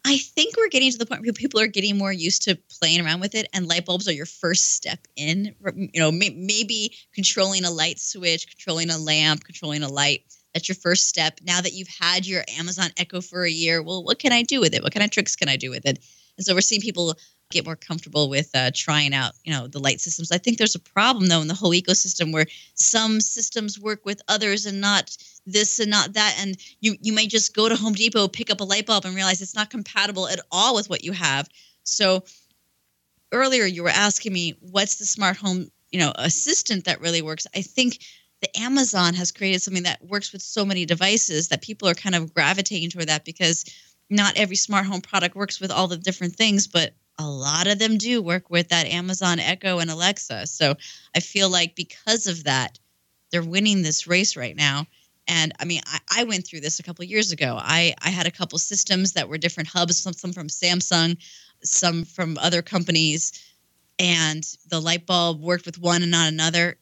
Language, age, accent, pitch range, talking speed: English, 20-39, American, 165-200 Hz, 225 wpm